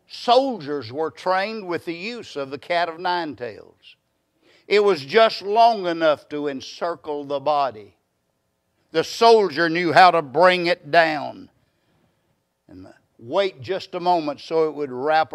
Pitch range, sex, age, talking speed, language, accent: 150-195 Hz, male, 60-79, 155 wpm, English, American